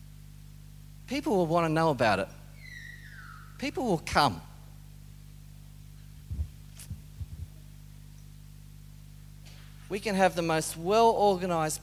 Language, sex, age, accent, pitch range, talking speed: English, male, 40-59, Australian, 145-180 Hz, 80 wpm